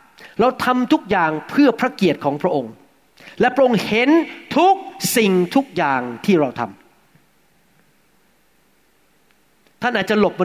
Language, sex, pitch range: Thai, male, 180-250 Hz